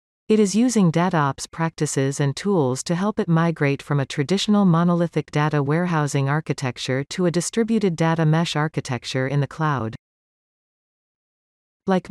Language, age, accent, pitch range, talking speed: English, 40-59, American, 135-180 Hz, 140 wpm